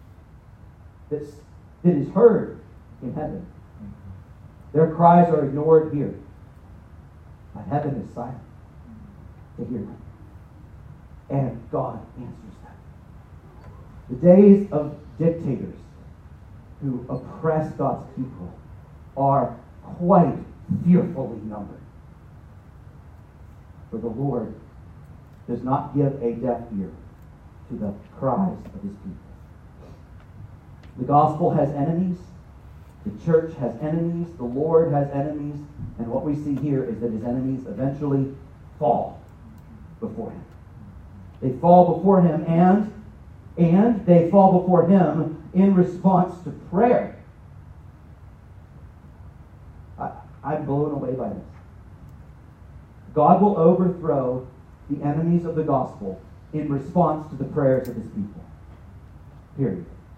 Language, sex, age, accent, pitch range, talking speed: English, male, 40-59, American, 100-160 Hz, 110 wpm